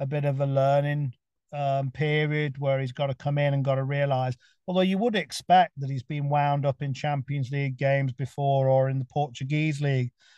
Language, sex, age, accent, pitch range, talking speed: English, male, 40-59, British, 135-160 Hz, 210 wpm